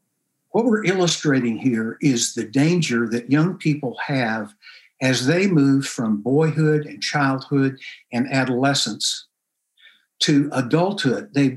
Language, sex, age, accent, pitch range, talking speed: English, male, 60-79, American, 130-160 Hz, 120 wpm